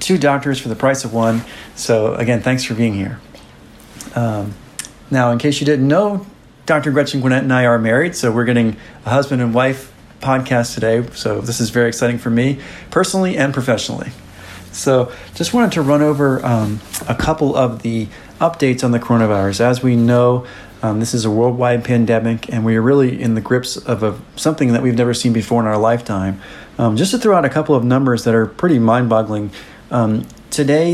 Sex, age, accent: male, 40-59, American